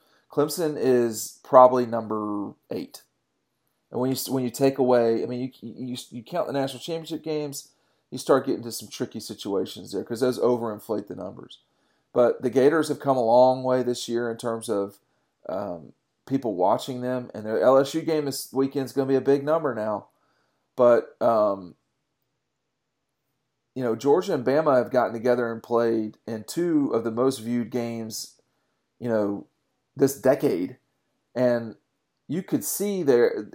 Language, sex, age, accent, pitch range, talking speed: English, male, 40-59, American, 115-140 Hz, 170 wpm